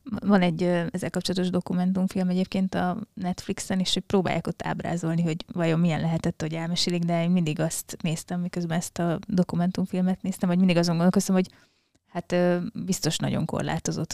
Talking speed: 155 wpm